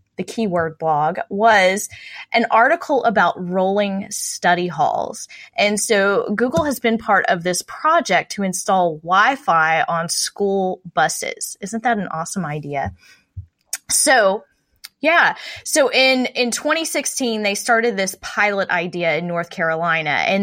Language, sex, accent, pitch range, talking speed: English, female, American, 180-225 Hz, 130 wpm